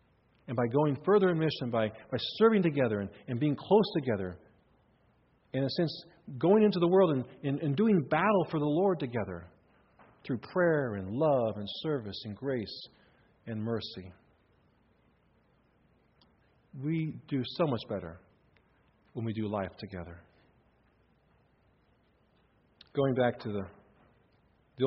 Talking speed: 135 wpm